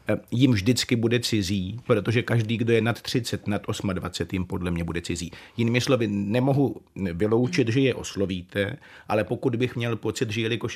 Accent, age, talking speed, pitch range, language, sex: native, 40-59, 175 wpm, 100-115 Hz, Czech, male